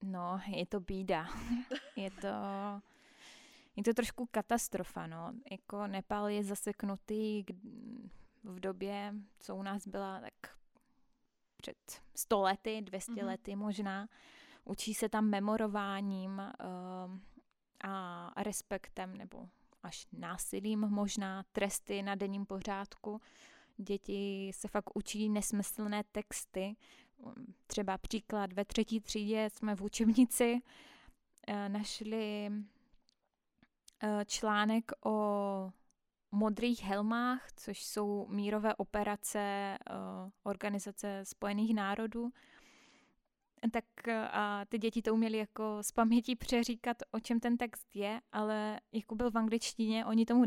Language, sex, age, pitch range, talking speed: Czech, female, 20-39, 200-230 Hz, 105 wpm